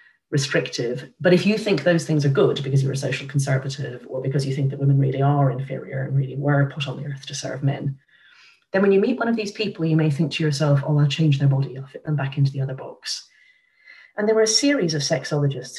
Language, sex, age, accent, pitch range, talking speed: English, female, 40-59, British, 135-165 Hz, 250 wpm